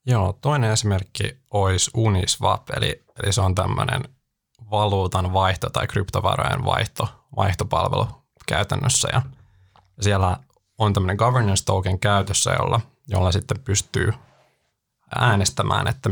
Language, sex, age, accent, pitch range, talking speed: Finnish, male, 20-39, native, 100-130 Hz, 110 wpm